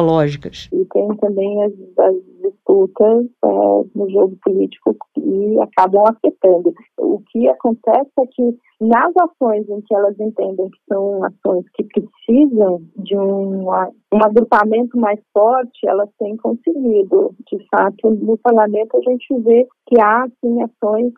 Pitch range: 205-260 Hz